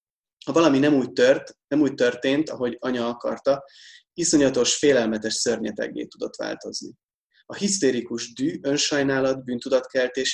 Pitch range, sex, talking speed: 120-140 Hz, male, 120 wpm